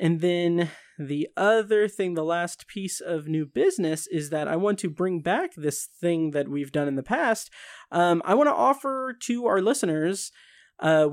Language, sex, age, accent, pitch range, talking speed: English, male, 30-49, American, 145-190 Hz, 190 wpm